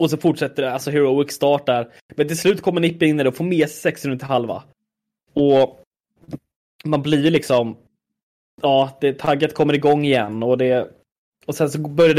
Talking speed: 175 wpm